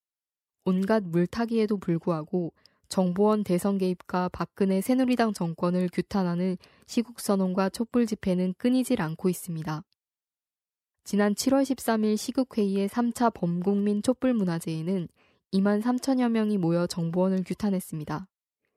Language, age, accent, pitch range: Korean, 20-39, native, 175-210 Hz